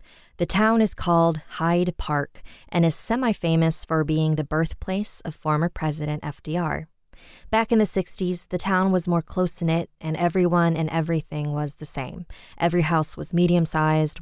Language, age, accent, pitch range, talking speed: English, 20-39, American, 150-175 Hz, 155 wpm